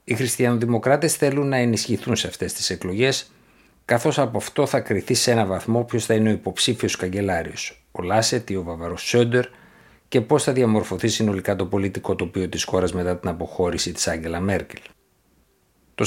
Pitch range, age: 95-120 Hz, 60-79